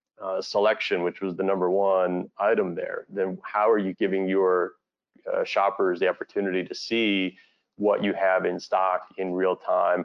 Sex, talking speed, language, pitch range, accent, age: male, 175 wpm, English, 90-105 Hz, American, 30-49